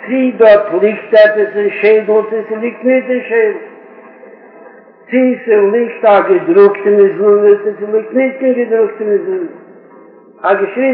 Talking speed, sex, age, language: 105 wpm, male, 60-79, Hebrew